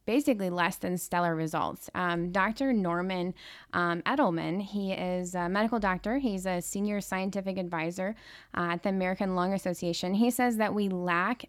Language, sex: English, female